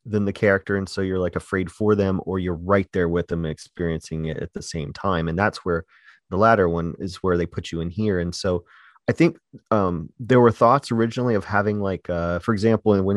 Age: 30-49